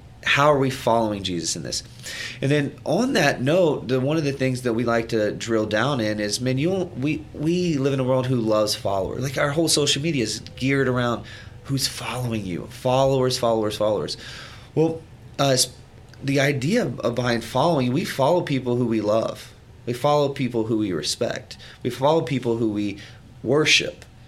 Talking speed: 190 wpm